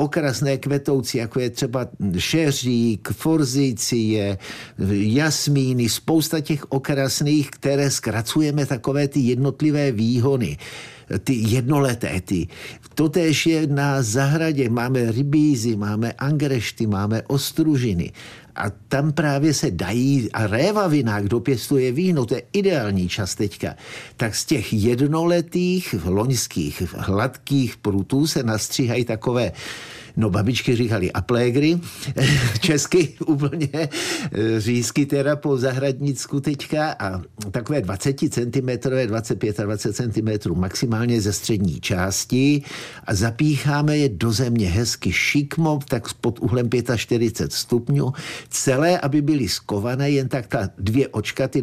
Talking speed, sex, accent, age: 120 wpm, male, native, 50-69